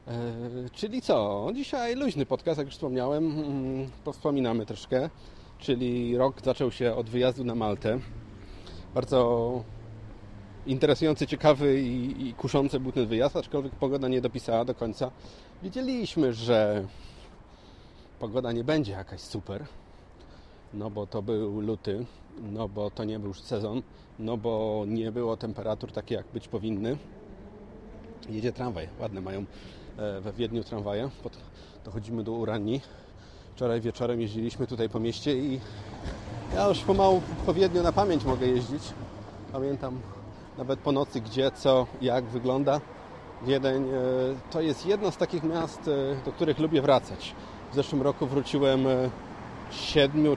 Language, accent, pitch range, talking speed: Polish, native, 110-140 Hz, 130 wpm